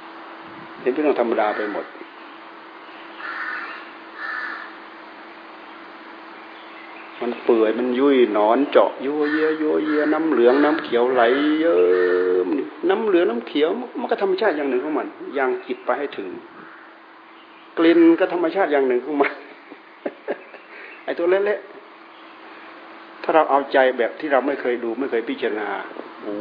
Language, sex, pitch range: Thai, male, 120-150 Hz